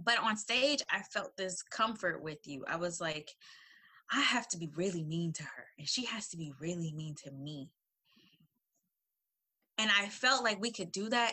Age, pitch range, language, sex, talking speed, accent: 20-39, 165-235 Hz, English, female, 195 wpm, American